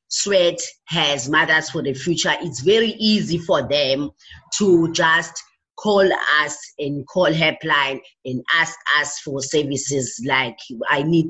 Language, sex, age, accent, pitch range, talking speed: English, female, 30-49, South African, 145-185 Hz, 140 wpm